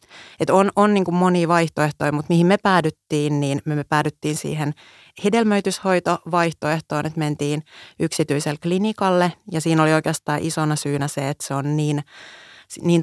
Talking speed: 145 wpm